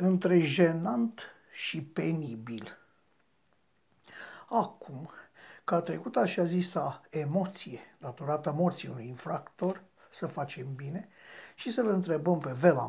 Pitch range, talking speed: 150-195 Hz, 115 wpm